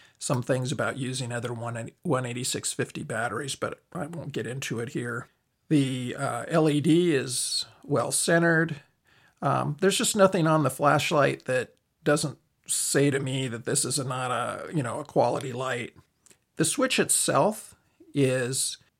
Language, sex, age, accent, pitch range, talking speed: English, male, 50-69, American, 135-155 Hz, 145 wpm